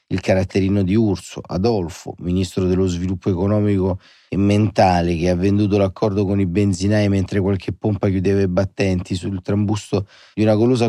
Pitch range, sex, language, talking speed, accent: 95-105 Hz, male, Italian, 160 wpm, native